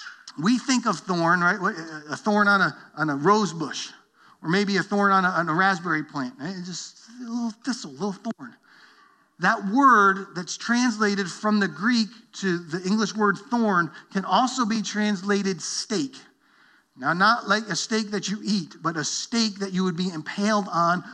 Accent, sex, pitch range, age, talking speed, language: American, male, 185-220 Hz, 40-59, 185 wpm, English